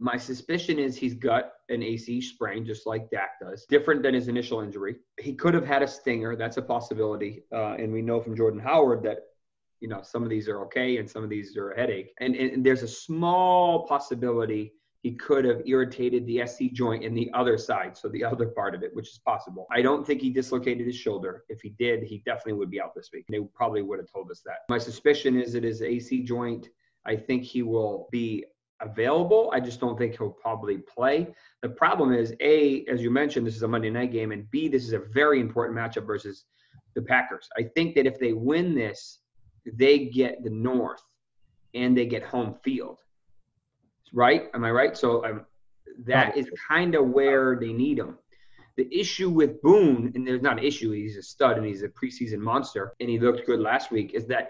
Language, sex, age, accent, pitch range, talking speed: English, male, 30-49, American, 115-135 Hz, 215 wpm